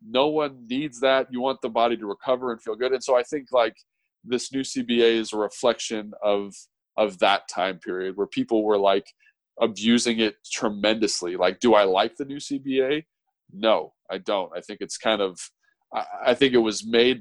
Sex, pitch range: male, 105-140 Hz